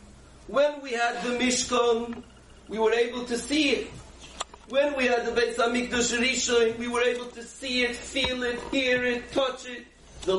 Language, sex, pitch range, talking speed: English, male, 235-265 Hz, 180 wpm